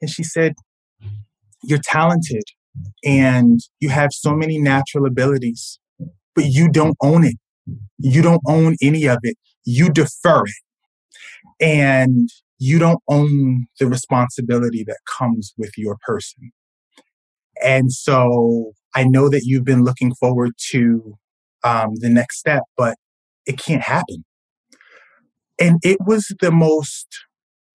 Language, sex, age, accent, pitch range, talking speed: English, male, 30-49, American, 120-160 Hz, 130 wpm